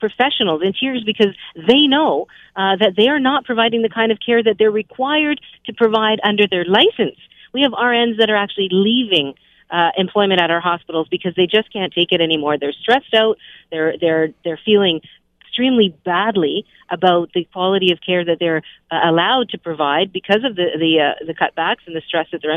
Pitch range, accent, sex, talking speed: 180-235 Hz, American, female, 200 wpm